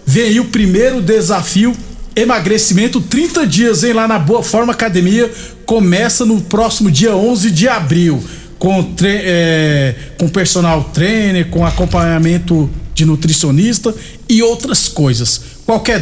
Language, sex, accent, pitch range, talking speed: Portuguese, male, Brazilian, 170-215 Hz, 130 wpm